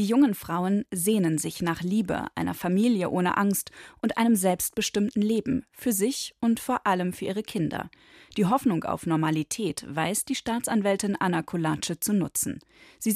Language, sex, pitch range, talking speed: German, female, 170-225 Hz, 160 wpm